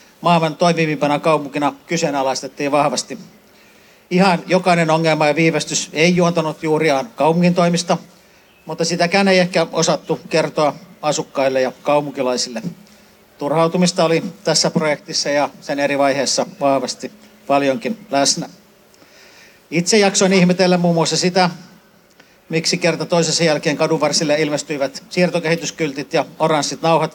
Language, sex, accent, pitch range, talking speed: Finnish, male, native, 150-185 Hz, 115 wpm